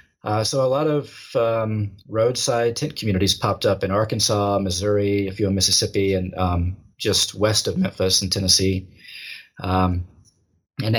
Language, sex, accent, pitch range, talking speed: English, male, American, 100-120 Hz, 155 wpm